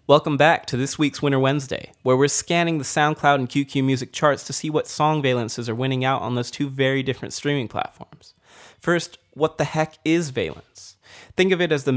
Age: 30-49